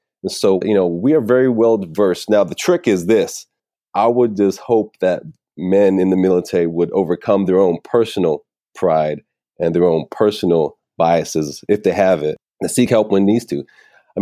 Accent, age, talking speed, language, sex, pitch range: American, 30-49, 180 wpm, English, male, 85-100 Hz